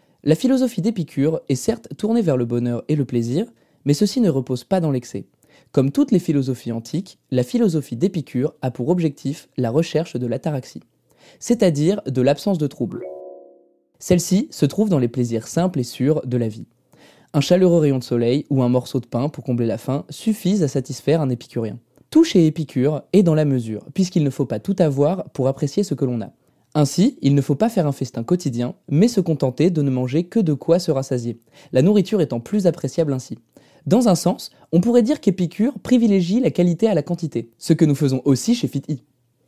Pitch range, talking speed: 130-180 Hz, 205 wpm